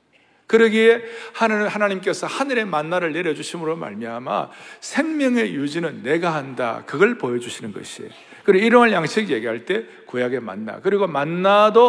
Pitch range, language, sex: 150-240 Hz, Korean, male